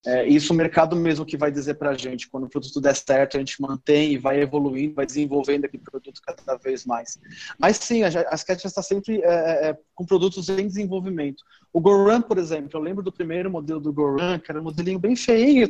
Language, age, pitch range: Portuguese, 20-39, 150-190 Hz